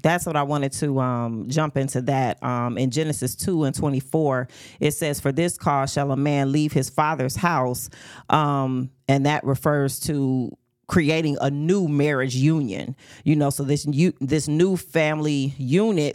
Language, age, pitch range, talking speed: English, 40-59, 135-155 Hz, 170 wpm